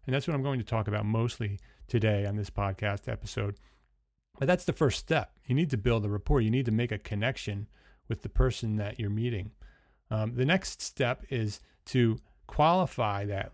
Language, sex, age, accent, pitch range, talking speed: English, male, 30-49, American, 105-130 Hz, 200 wpm